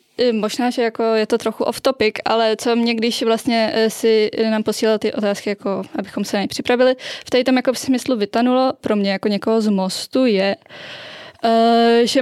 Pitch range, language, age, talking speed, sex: 215-260 Hz, English, 20-39, 180 wpm, female